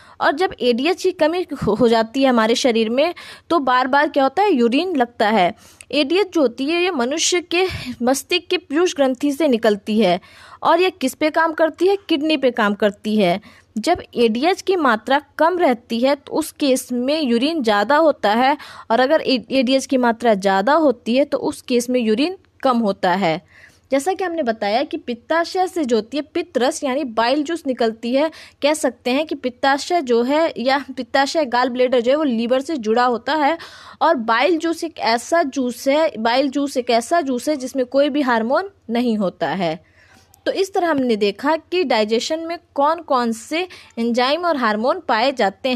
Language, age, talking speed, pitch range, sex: Hindi, 20-39, 195 wpm, 235-320 Hz, female